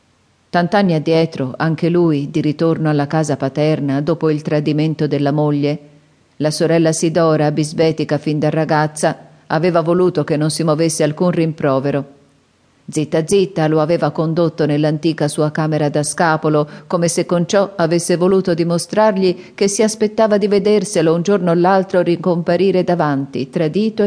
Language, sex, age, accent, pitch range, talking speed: Italian, female, 40-59, native, 145-180 Hz, 145 wpm